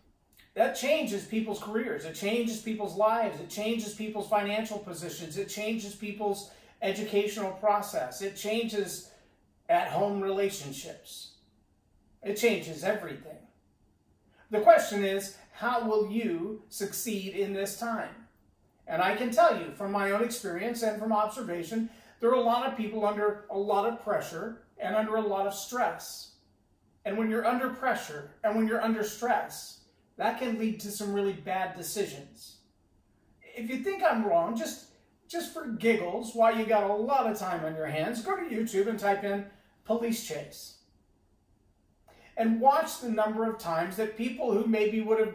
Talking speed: 160 wpm